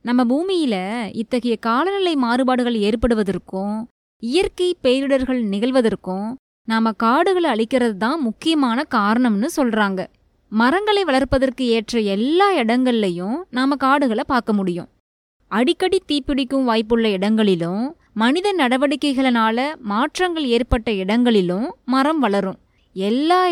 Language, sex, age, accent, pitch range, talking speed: Tamil, female, 20-39, native, 225-305 Hz, 95 wpm